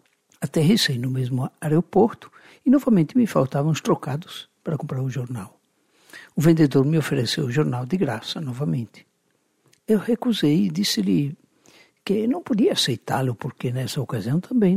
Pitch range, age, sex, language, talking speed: 140-215 Hz, 60-79, male, Portuguese, 140 wpm